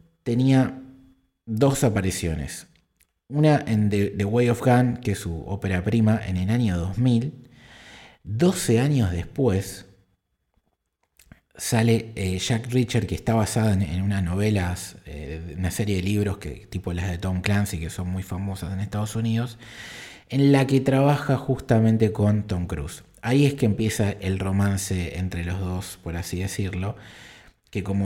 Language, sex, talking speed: Spanish, male, 155 wpm